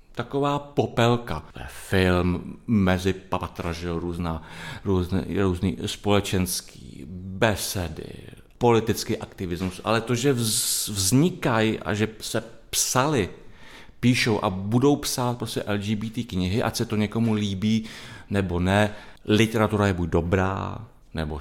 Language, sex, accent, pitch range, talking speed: Czech, male, native, 95-120 Hz, 100 wpm